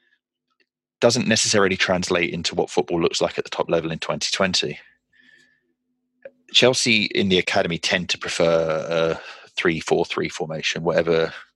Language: English